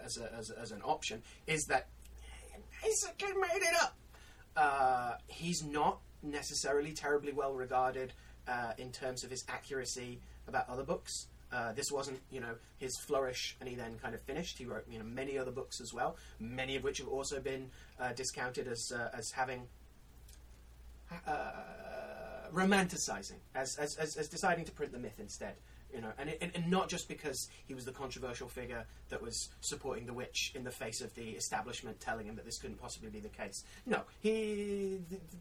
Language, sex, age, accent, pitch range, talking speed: English, male, 30-49, British, 115-155 Hz, 185 wpm